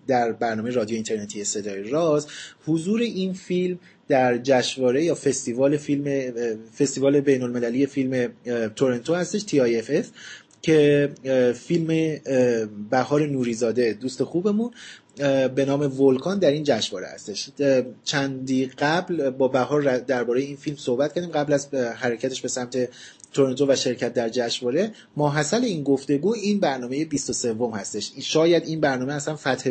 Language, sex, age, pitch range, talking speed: Persian, male, 30-49, 125-150 Hz, 130 wpm